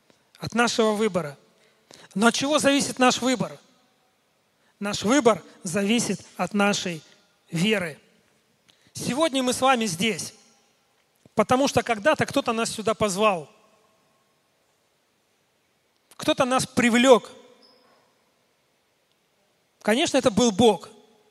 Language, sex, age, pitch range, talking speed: Russian, male, 40-59, 205-240 Hz, 95 wpm